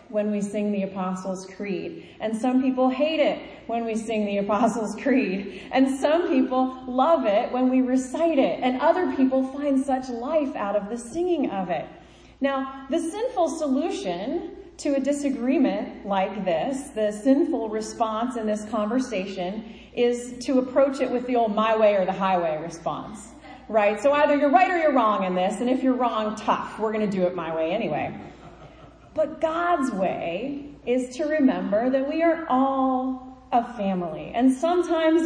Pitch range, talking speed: 210-280 Hz, 175 wpm